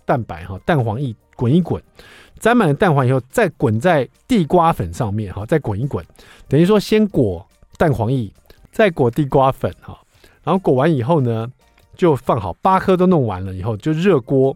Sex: male